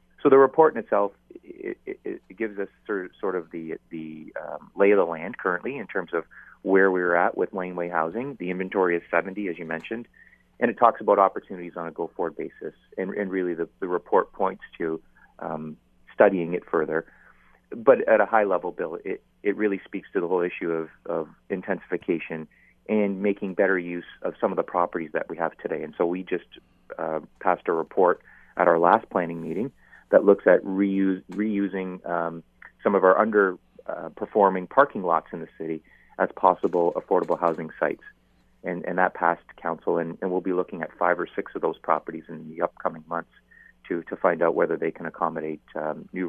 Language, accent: English, American